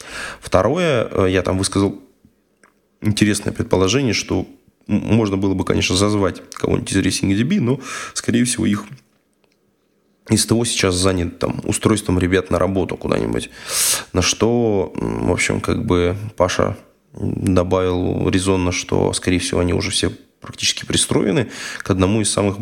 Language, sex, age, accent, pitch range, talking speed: Russian, male, 20-39, native, 90-110 Hz, 135 wpm